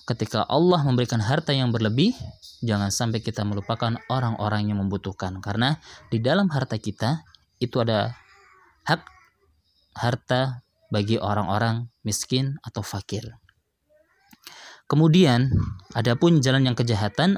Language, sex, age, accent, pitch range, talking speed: Indonesian, male, 20-39, native, 105-130 Hz, 110 wpm